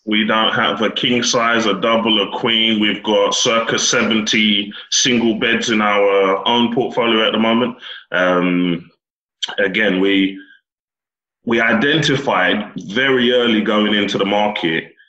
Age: 30-49